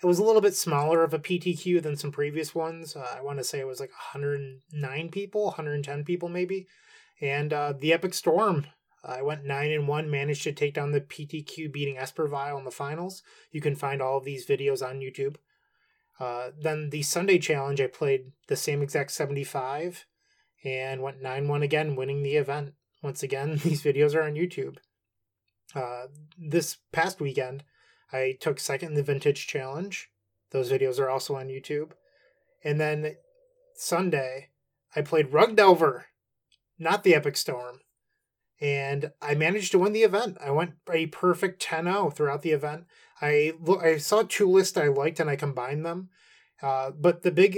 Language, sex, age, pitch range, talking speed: English, male, 20-39, 140-170 Hz, 180 wpm